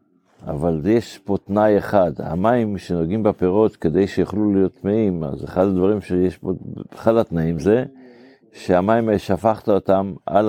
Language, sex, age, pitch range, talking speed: Hebrew, male, 60-79, 85-105 Hz, 135 wpm